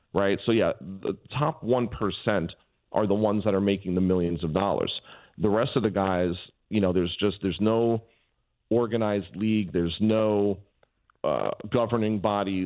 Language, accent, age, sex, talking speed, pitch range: English, American, 40-59, male, 165 wpm, 100-115 Hz